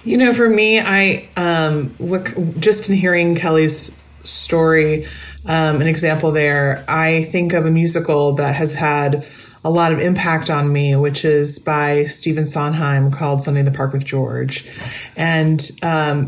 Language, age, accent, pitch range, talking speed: English, 30-49, American, 145-165 Hz, 160 wpm